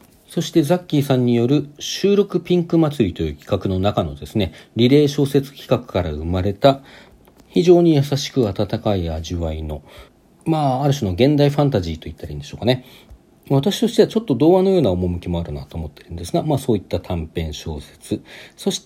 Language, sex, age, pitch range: Japanese, male, 40-59, 95-155 Hz